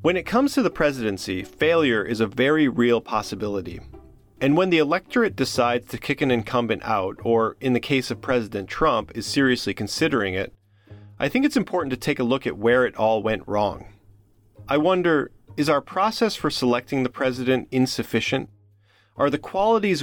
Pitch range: 105-140 Hz